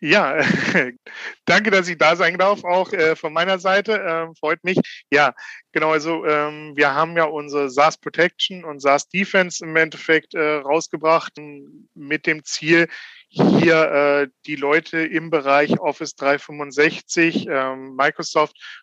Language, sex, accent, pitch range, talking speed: German, male, German, 140-165 Hz, 145 wpm